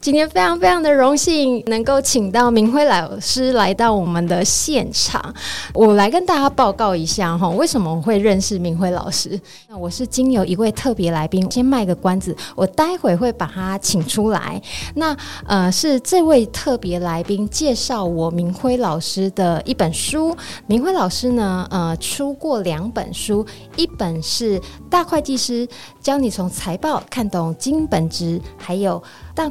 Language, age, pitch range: Chinese, 20-39, 185-260 Hz